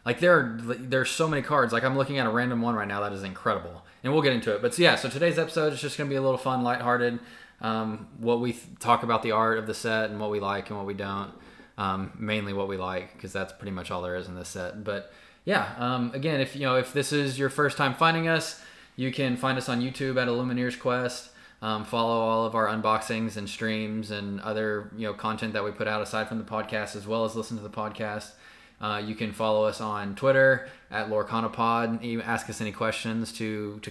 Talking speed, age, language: 250 wpm, 20-39, English